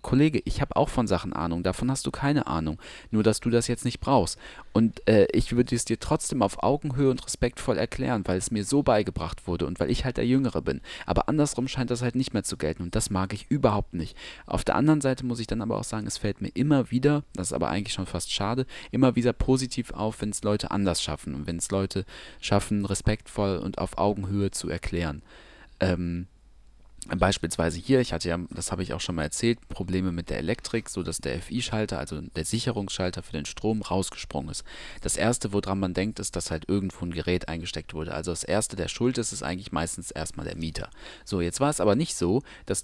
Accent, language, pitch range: German, German, 90-120 Hz